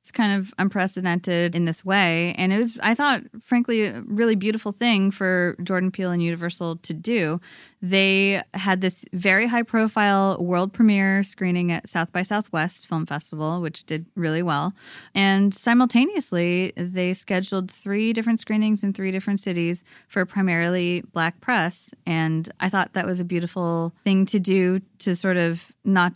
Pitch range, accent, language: 170-210 Hz, American, English